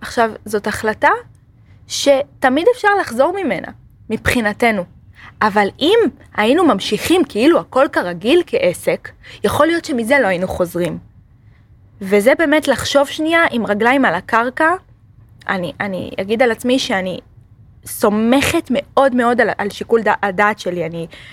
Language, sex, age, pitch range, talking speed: Hebrew, female, 20-39, 180-250 Hz, 125 wpm